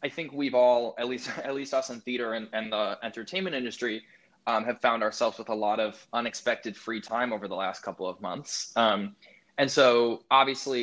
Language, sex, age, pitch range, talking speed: English, male, 20-39, 110-135 Hz, 205 wpm